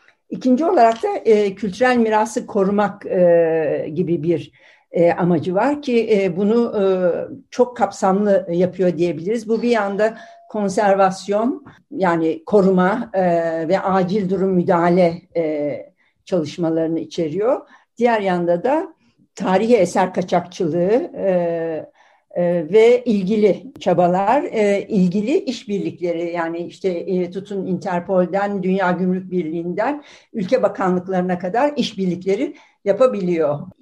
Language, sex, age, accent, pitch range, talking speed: Turkish, female, 60-79, native, 175-215 Hz, 110 wpm